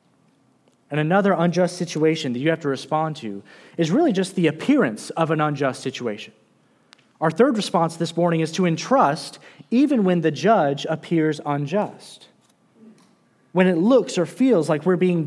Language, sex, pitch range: English, male, 145-195 Hz